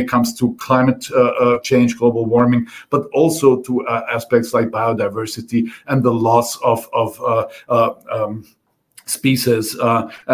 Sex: male